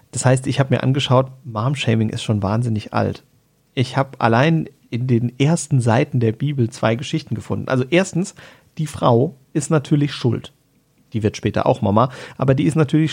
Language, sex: German, male